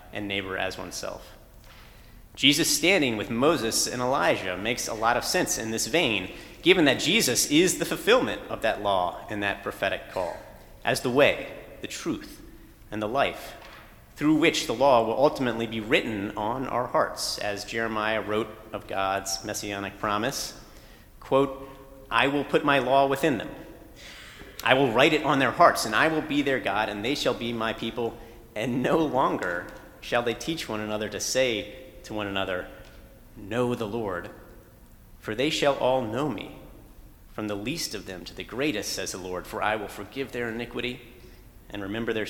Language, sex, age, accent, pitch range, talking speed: English, male, 40-59, American, 105-125 Hz, 180 wpm